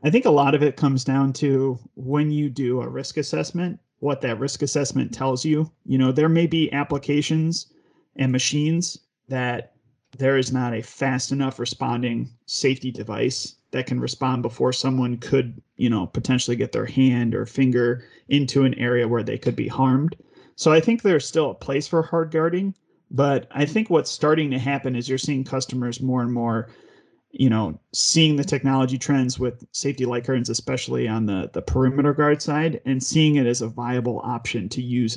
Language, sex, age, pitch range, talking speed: English, male, 30-49, 125-145 Hz, 190 wpm